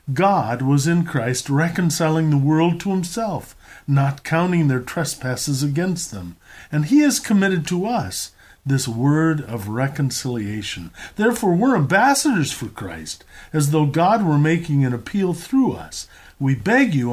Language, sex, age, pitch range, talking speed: English, male, 50-69, 125-185 Hz, 145 wpm